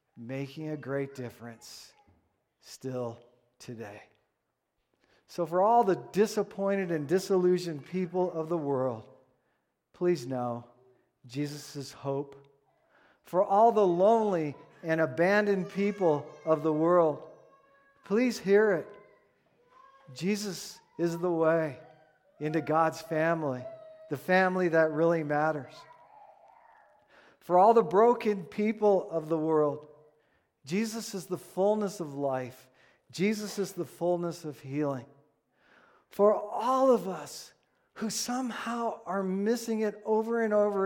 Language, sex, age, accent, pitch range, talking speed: English, male, 50-69, American, 140-185 Hz, 115 wpm